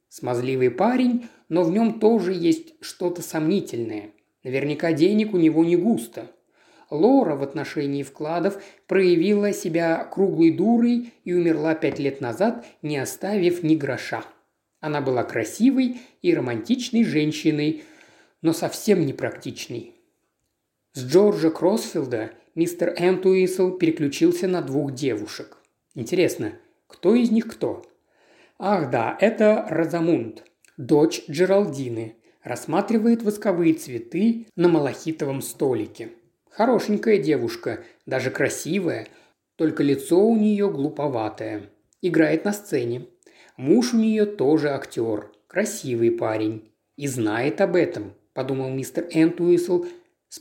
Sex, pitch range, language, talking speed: male, 145-205 Hz, Russian, 110 wpm